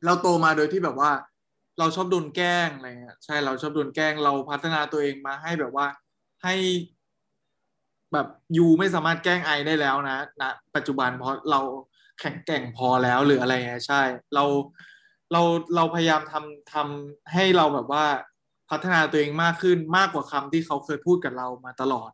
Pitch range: 140-175 Hz